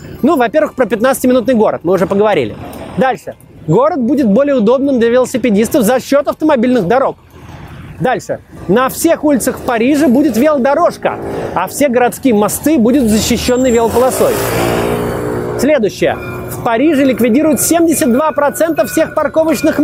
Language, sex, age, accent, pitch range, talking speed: Russian, male, 30-49, native, 220-285 Hz, 120 wpm